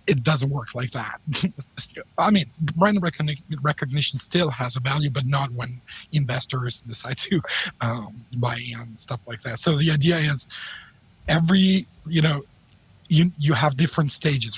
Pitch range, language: 130-160 Hz, English